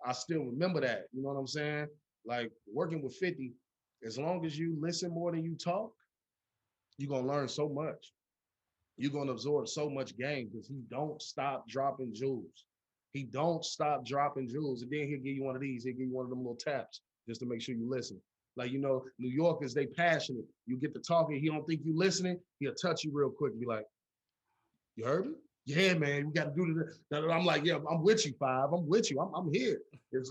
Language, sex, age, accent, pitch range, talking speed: English, male, 20-39, American, 125-160 Hz, 230 wpm